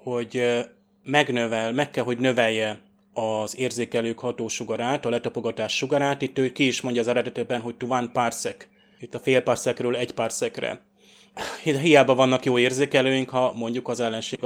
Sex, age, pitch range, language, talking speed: male, 30-49, 115-130 Hz, Hungarian, 160 wpm